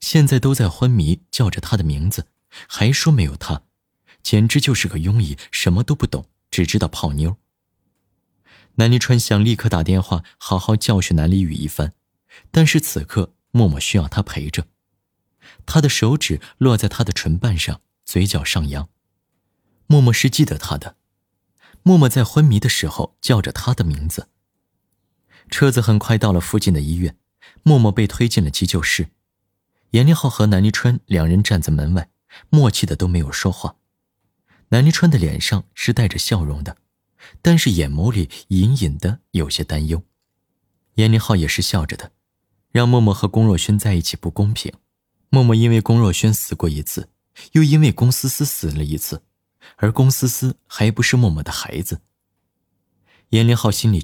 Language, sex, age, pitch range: Chinese, male, 30-49, 90-120 Hz